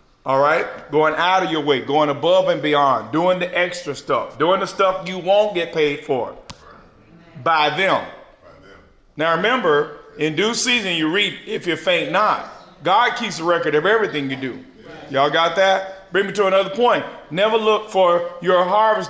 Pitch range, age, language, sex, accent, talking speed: 155-195 Hz, 40-59, English, male, American, 180 wpm